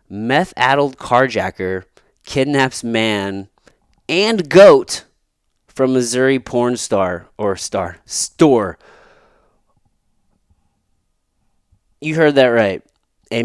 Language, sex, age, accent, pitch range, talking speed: English, male, 30-49, American, 95-130 Hz, 80 wpm